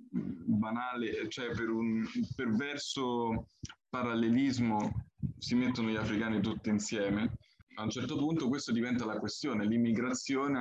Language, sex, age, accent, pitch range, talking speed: Italian, male, 20-39, native, 105-125 Hz, 120 wpm